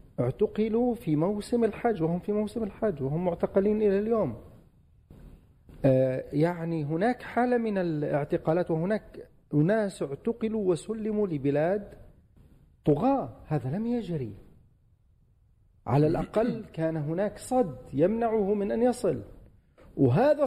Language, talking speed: Arabic, 110 wpm